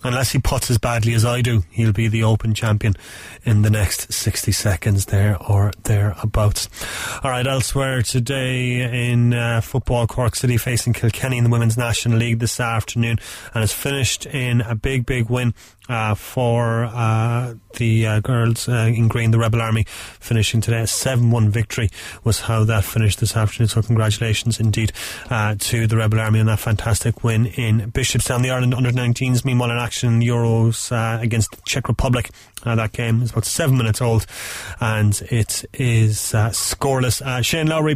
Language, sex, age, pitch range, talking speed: English, male, 30-49, 110-135 Hz, 180 wpm